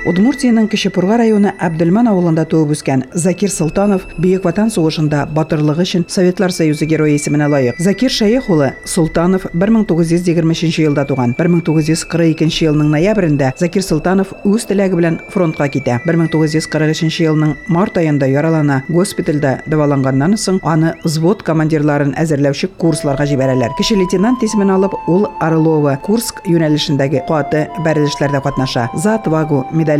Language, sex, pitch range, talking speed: Russian, female, 150-190 Hz, 80 wpm